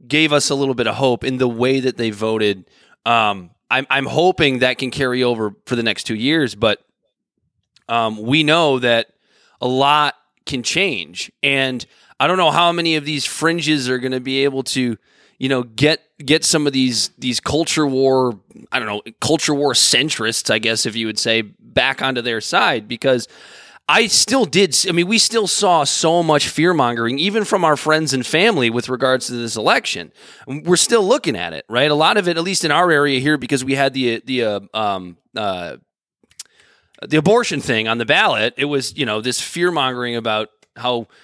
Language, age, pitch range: English, 20-39, 120-150 Hz